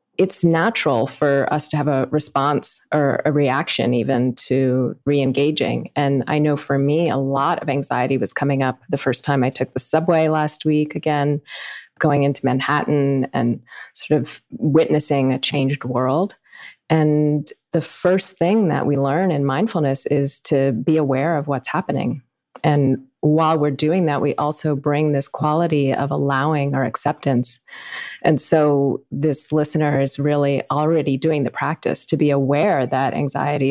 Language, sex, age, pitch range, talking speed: English, female, 30-49, 135-155 Hz, 160 wpm